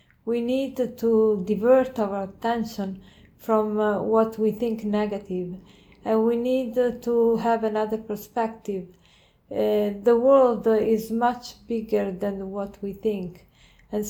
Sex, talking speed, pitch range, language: female, 125 wpm, 200-230 Hz, English